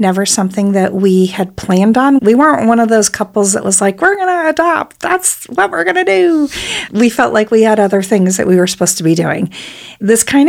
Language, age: English, 40-59